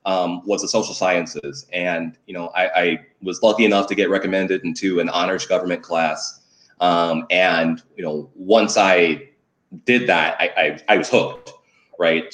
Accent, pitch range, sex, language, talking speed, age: American, 80-105 Hz, male, English, 170 wpm, 30-49